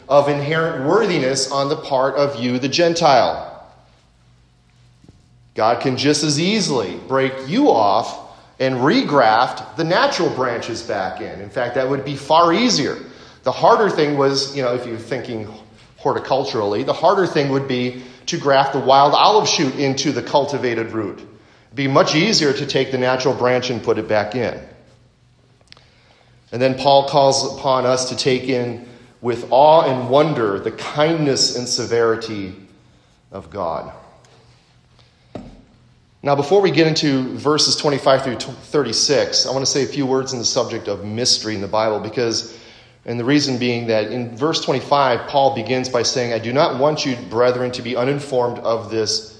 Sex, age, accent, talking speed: male, 30-49, American, 170 wpm